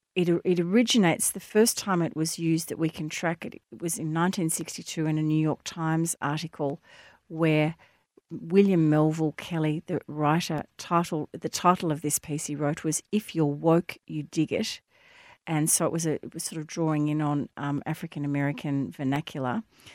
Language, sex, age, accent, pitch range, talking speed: English, female, 40-59, Australian, 150-175 Hz, 180 wpm